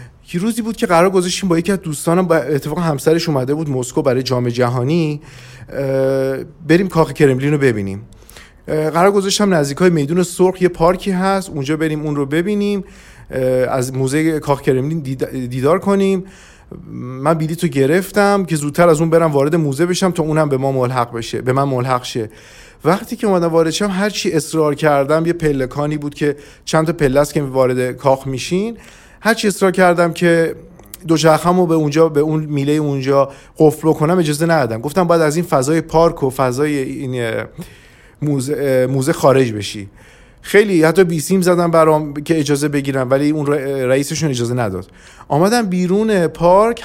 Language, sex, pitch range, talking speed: English, male, 135-180 Hz, 160 wpm